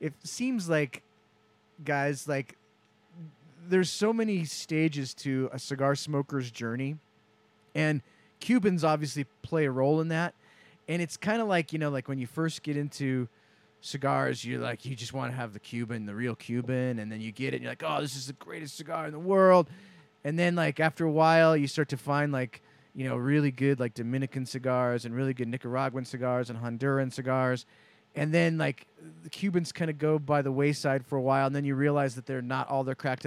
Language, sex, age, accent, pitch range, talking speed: English, male, 30-49, American, 135-160 Hz, 205 wpm